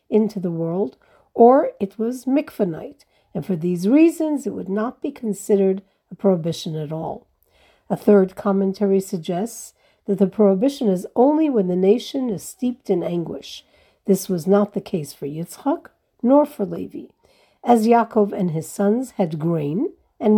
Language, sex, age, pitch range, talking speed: English, female, 50-69, 185-235 Hz, 160 wpm